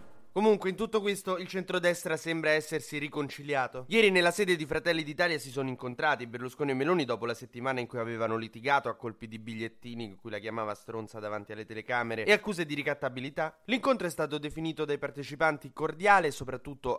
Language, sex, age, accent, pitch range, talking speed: Italian, male, 20-39, native, 120-165 Hz, 185 wpm